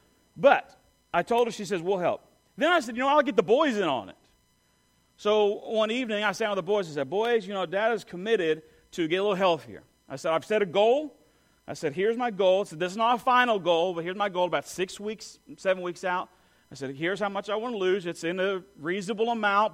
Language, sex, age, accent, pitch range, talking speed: English, male, 40-59, American, 170-225 Hz, 255 wpm